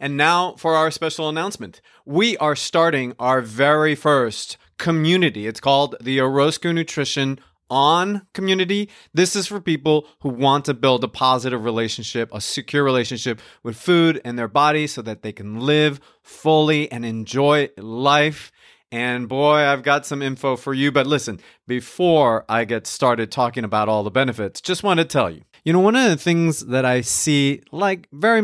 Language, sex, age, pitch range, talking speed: English, male, 30-49, 125-165 Hz, 175 wpm